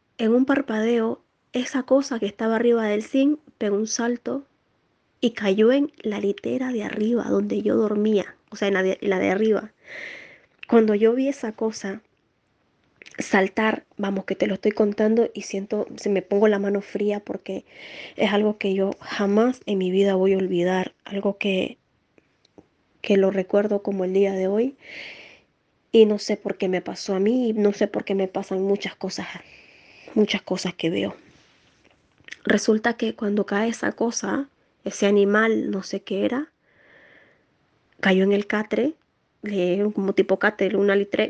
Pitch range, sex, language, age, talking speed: 195-225 Hz, female, Spanish, 20-39, 170 wpm